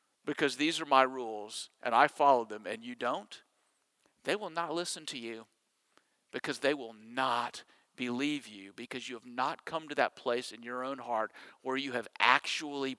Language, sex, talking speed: English, male, 185 wpm